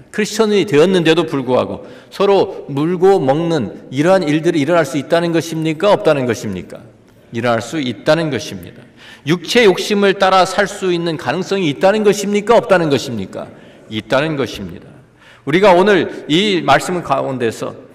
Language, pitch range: Korean, 125-200 Hz